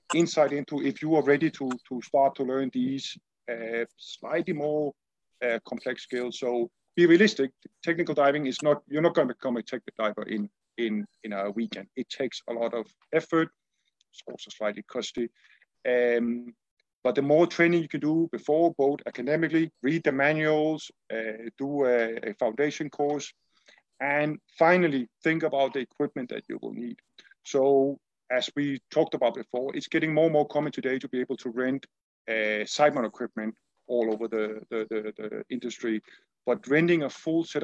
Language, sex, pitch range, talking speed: English, male, 120-155 Hz, 175 wpm